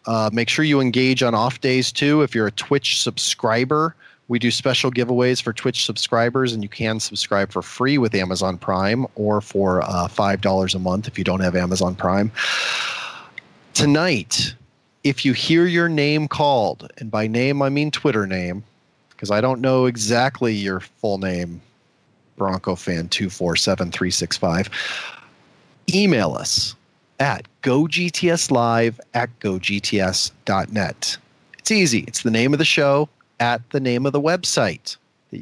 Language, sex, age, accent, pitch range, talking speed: English, male, 30-49, American, 105-140 Hz, 145 wpm